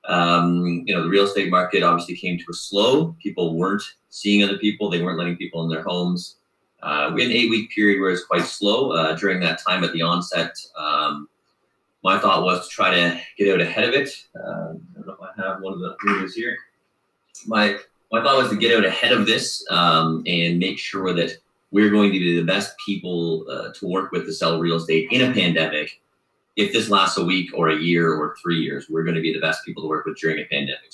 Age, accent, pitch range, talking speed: 30-49, American, 80-100 Hz, 235 wpm